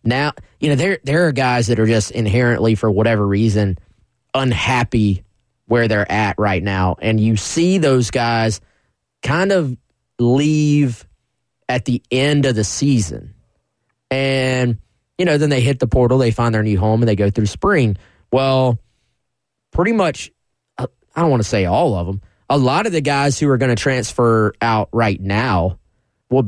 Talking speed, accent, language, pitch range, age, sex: 175 wpm, American, English, 105-125 Hz, 20-39, male